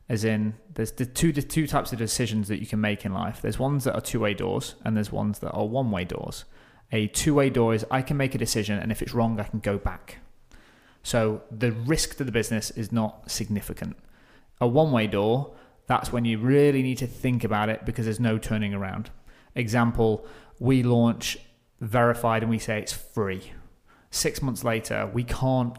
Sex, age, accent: male, 30-49, British